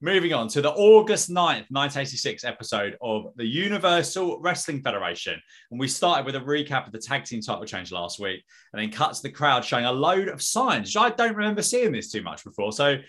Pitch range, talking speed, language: 115-170 Hz, 215 wpm, English